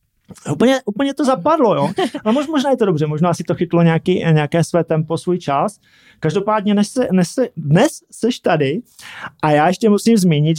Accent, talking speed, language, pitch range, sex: native, 180 wpm, Czech, 145-190 Hz, male